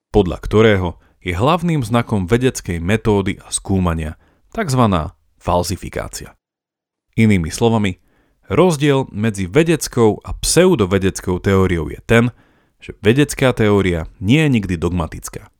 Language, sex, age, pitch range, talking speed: Slovak, male, 40-59, 85-120 Hz, 110 wpm